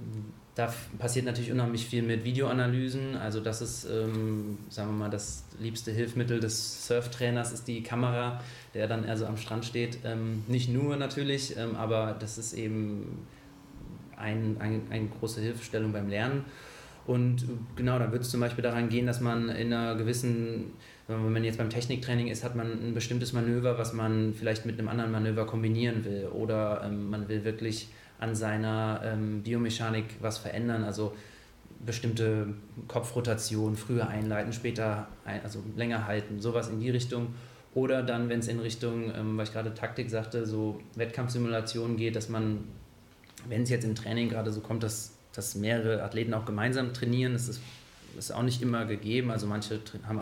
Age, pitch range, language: 20-39, 110-120 Hz, German